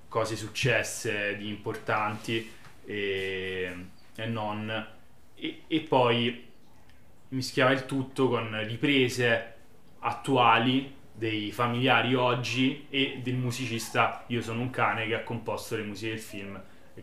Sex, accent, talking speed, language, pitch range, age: male, native, 120 wpm, Italian, 105-120 Hz, 20-39